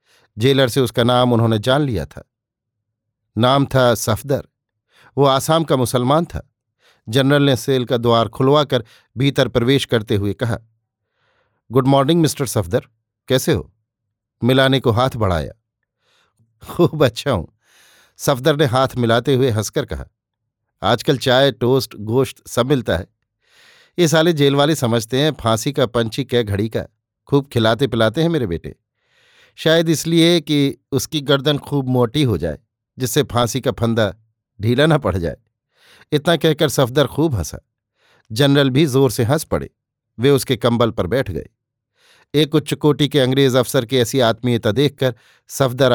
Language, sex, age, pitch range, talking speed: Hindi, male, 50-69, 115-140 Hz, 155 wpm